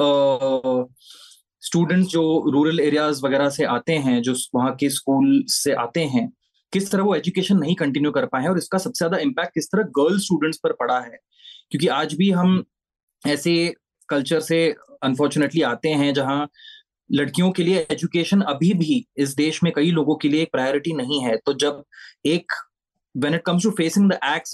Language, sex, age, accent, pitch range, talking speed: Hindi, male, 20-39, native, 145-185 Hz, 180 wpm